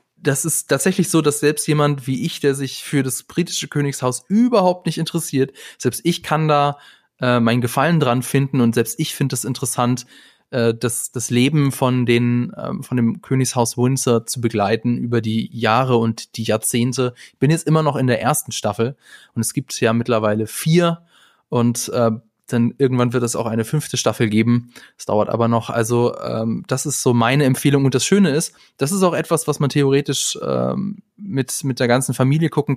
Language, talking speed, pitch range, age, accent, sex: German, 195 wpm, 115-140 Hz, 20-39, German, male